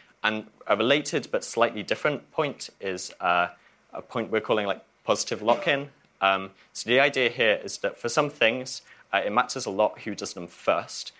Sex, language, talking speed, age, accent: male, English, 190 wpm, 20-39, British